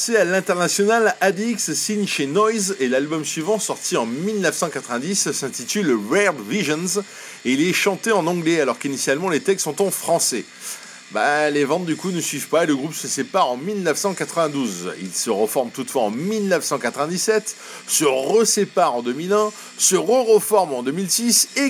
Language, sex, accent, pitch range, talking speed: French, male, French, 165-225 Hz, 160 wpm